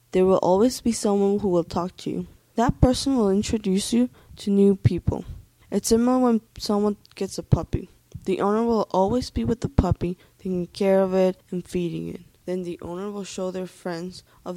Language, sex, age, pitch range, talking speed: English, female, 10-29, 180-215 Hz, 200 wpm